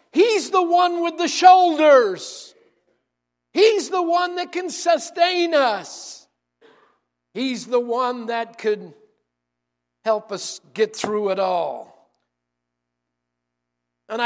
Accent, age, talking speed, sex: American, 50-69, 105 wpm, male